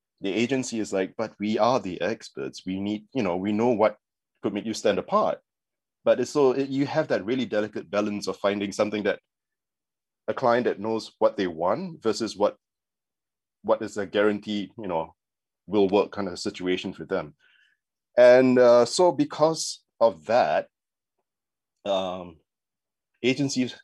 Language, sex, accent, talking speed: English, male, Malaysian, 165 wpm